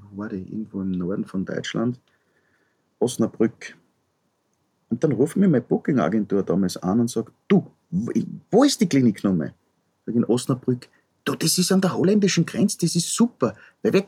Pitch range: 105-165 Hz